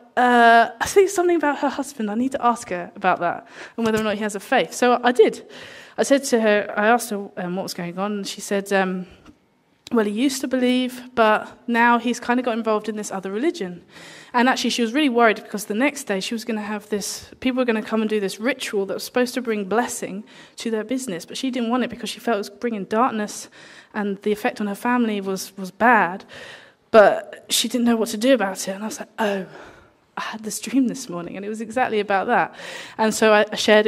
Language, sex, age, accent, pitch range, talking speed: English, female, 20-39, British, 205-255 Hz, 250 wpm